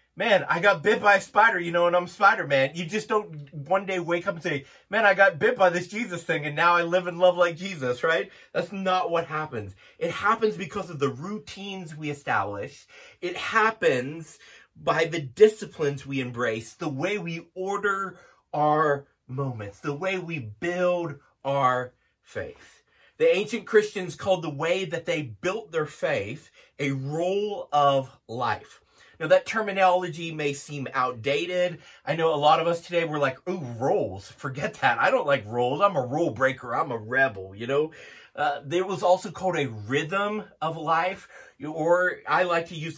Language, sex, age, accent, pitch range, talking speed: English, male, 30-49, American, 145-195 Hz, 180 wpm